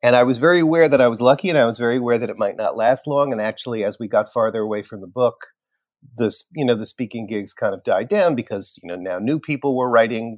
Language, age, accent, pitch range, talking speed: English, 40-59, American, 110-155 Hz, 280 wpm